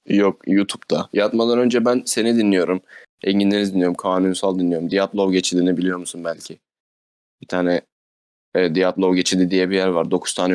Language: Turkish